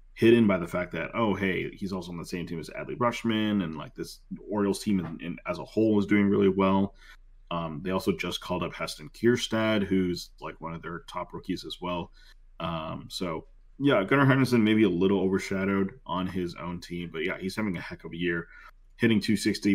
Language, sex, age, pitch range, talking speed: English, male, 30-49, 85-105 Hz, 220 wpm